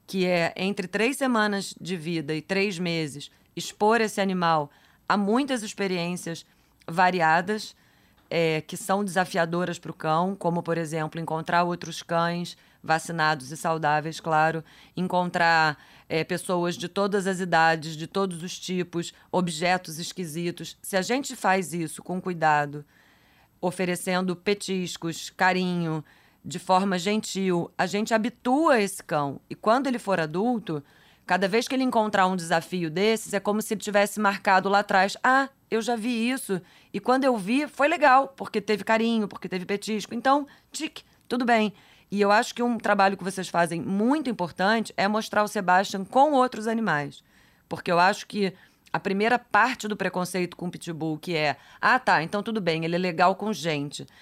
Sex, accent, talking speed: female, Brazilian, 165 wpm